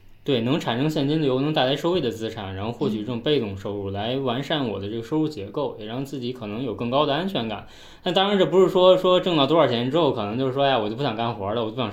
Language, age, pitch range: Chinese, 20-39, 115-155 Hz